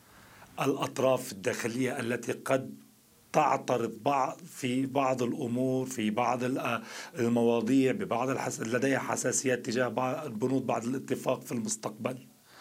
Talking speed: 115 wpm